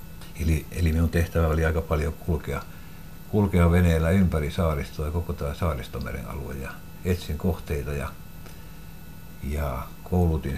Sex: male